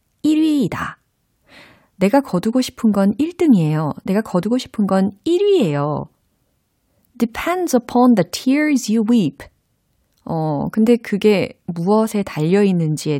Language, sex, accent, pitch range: Korean, female, native, 155-235 Hz